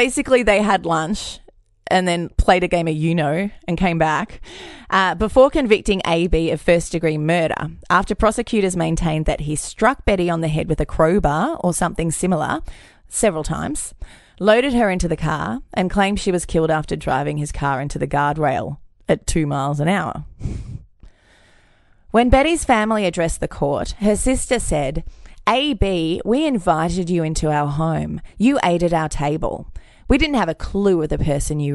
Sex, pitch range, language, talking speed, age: female, 155-200 Hz, English, 175 wpm, 20-39